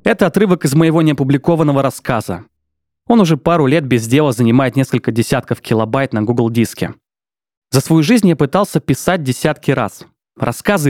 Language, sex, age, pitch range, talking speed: Russian, male, 20-39, 125-160 Hz, 155 wpm